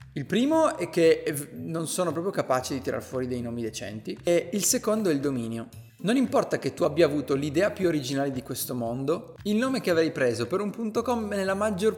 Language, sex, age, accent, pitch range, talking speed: Italian, male, 30-49, native, 135-195 Hz, 205 wpm